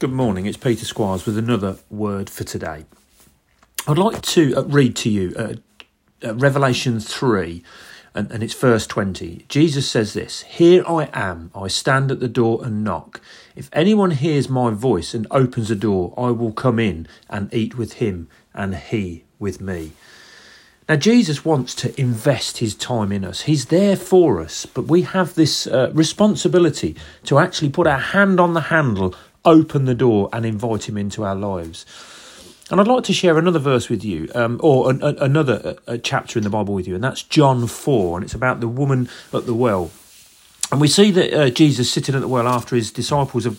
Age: 40-59